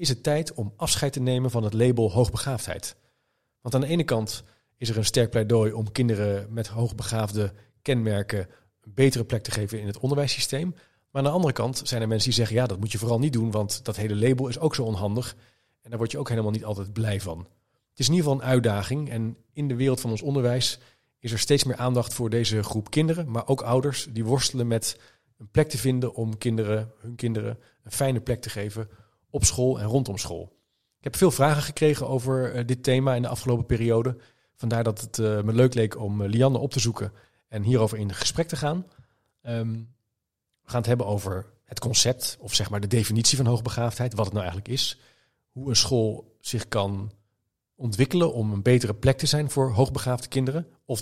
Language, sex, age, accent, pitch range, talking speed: Dutch, male, 40-59, Dutch, 110-130 Hz, 210 wpm